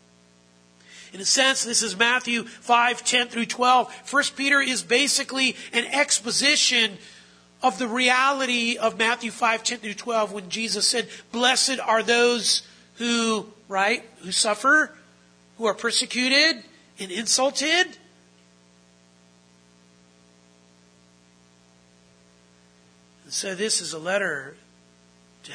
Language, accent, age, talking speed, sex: English, American, 50-69, 110 wpm, male